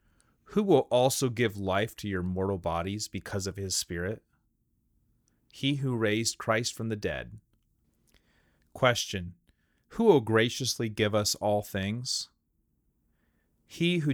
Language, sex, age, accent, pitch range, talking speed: English, male, 30-49, American, 90-115 Hz, 125 wpm